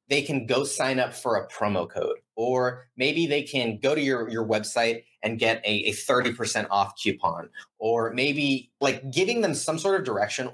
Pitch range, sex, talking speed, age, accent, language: 115-155 Hz, male, 195 wpm, 30-49, American, English